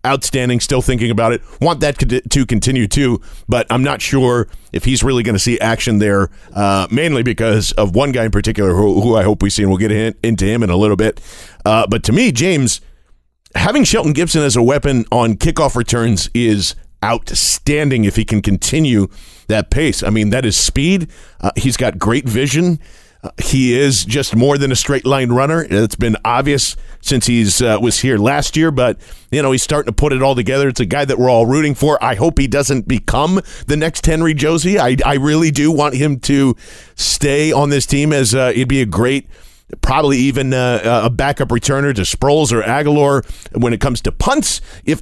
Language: English